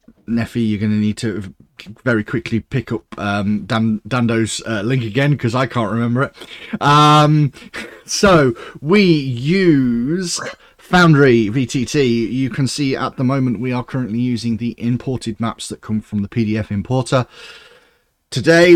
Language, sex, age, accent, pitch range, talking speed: English, male, 30-49, British, 105-130 Hz, 145 wpm